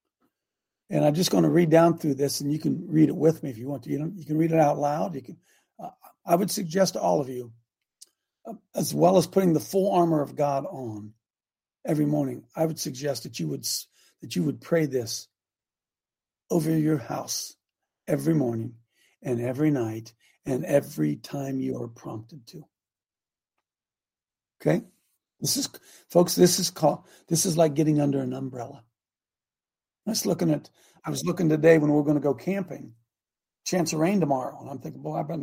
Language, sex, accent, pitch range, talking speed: English, male, American, 135-170 Hz, 190 wpm